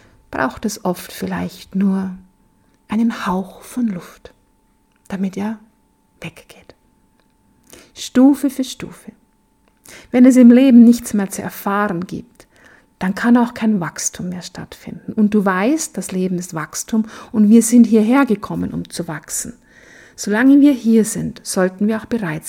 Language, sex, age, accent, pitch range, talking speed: German, female, 50-69, German, 190-230 Hz, 145 wpm